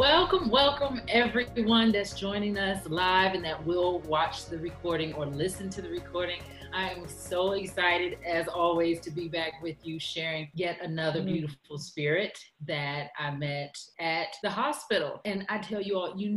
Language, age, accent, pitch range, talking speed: English, 30-49, American, 150-200 Hz, 170 wpm